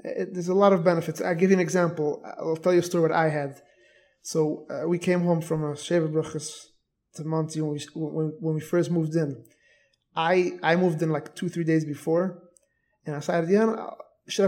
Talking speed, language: 210 wpm, English